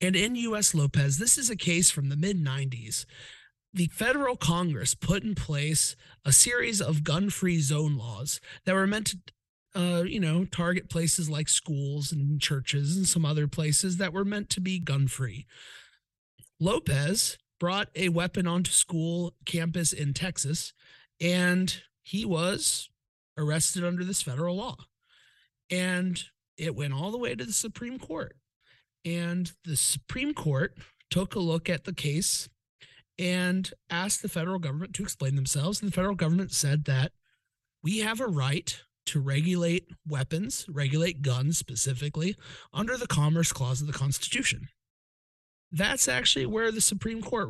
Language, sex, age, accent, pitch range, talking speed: English, male, 30-49, American, 140-185 Hz, 150 wpm